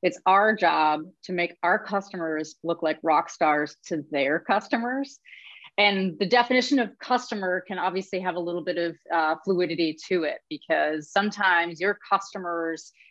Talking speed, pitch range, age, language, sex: 155 wpm, 165-215 Hz, 30-49, English, female